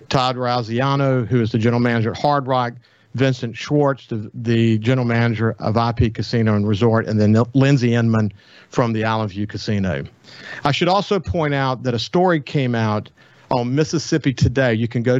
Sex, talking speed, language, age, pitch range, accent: male, 180 wpm, English, 50-69, 115-135 Hz, American